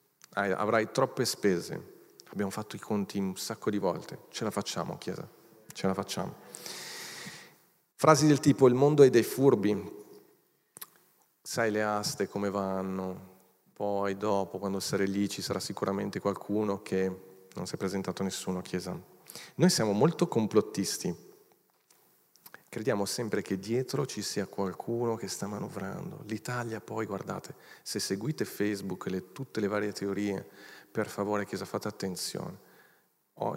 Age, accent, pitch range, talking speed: 40-59, native, 100-120 Hz, 145 wpm